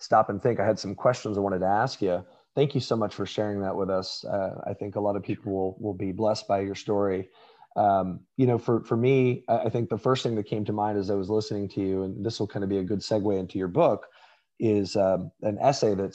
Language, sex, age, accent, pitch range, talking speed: English, male, 30-49, American, 100-115 Hz, 270 wpm